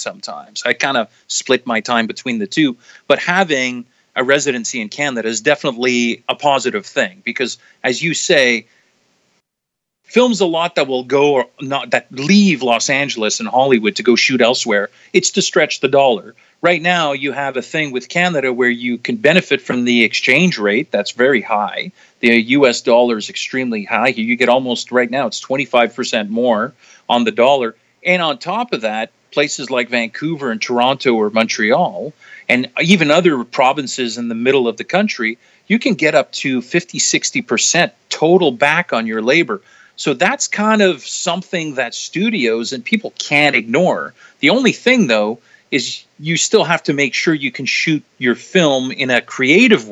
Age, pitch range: 40-59, 120-180 Hz